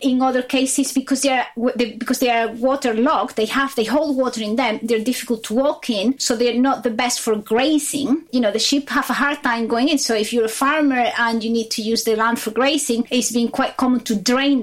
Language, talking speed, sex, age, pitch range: English, 240 wpm, female, 30-49, 230-275 Hz